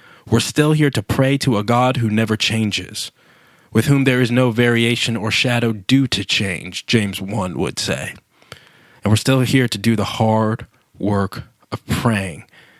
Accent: American